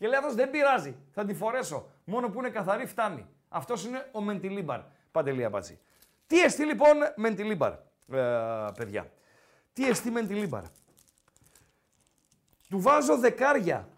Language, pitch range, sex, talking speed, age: Greek, 155-240 Hz, male, 125 wpm, 50-69